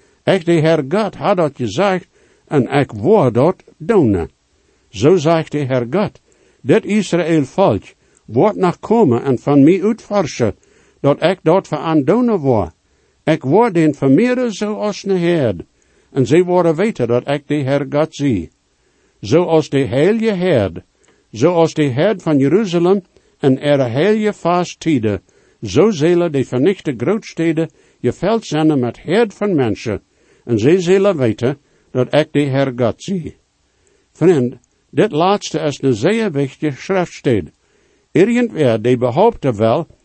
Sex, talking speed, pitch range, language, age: male, 150 wpm, 135-185 Hz, English, 60-79